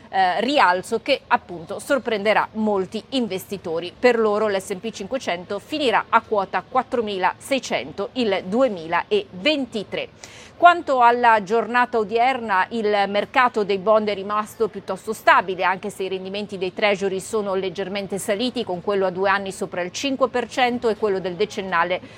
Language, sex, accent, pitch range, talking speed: Italian, female, native, 195-245 Hz, 135 wpm